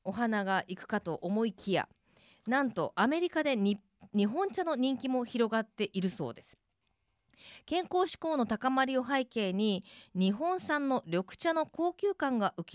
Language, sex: Japanese, female